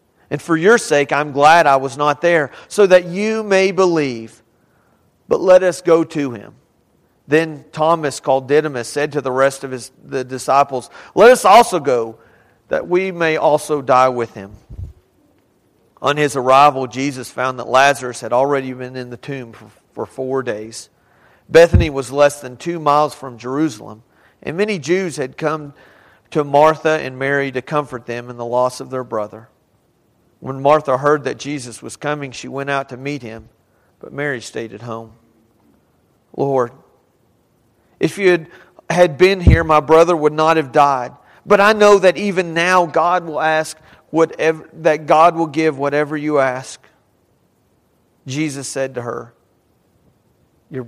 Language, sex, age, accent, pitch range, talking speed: English, male, 40-59, American, 125-155 Hz, 165 wpm